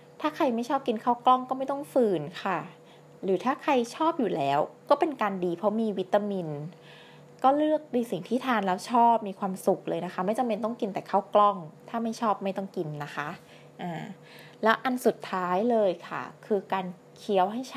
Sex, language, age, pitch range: female, Thai, 20-39, 165-225 Hz